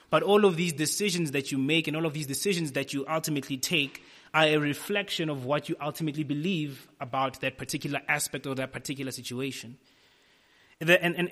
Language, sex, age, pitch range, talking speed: English, male, 20-39, 135-165 Hz, 180 wpm